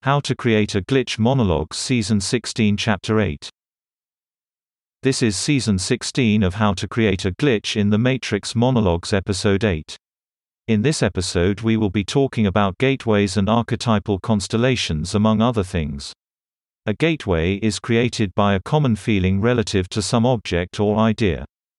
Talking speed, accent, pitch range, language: 150 wpm, British, 95-120 Hz, English